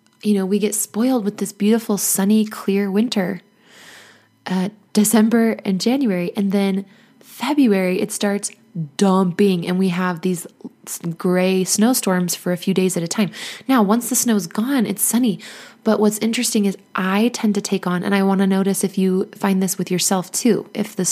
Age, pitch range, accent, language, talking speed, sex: 20-39, 190-225 Hz, American, English, 185 wpm, female